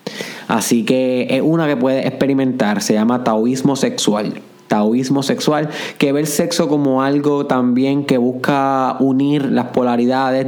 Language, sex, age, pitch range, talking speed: Spanish, male, 20-39, 125-155 Hz, 145 wpm